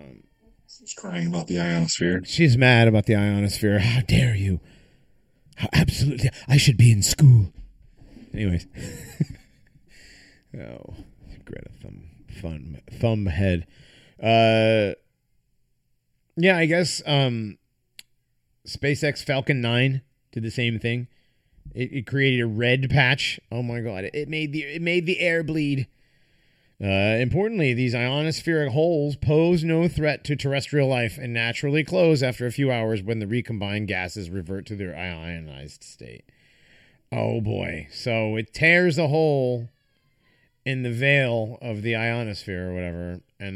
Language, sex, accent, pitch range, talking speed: English, male, American, 100-140 Hz, 140 wpm